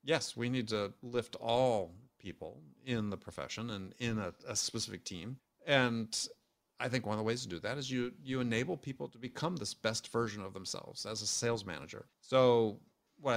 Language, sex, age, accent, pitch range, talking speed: English, male, 50-69, American, 105-125 Hz, 200 wpm